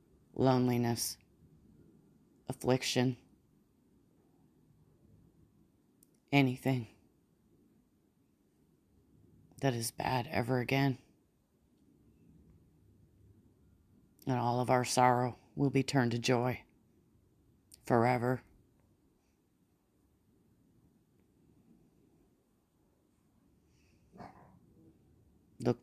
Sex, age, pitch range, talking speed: female, 30-49, 105-130 Hz, 45 wpm